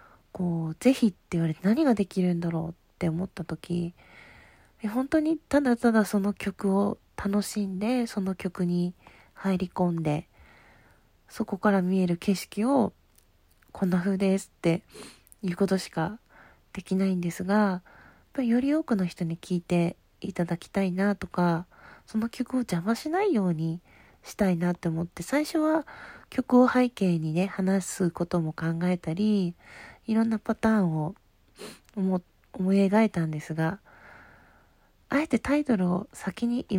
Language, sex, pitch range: Japanese, female, 165-210 Hz